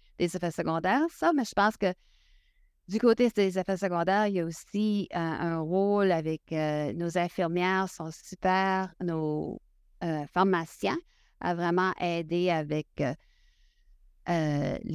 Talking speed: 140 wpm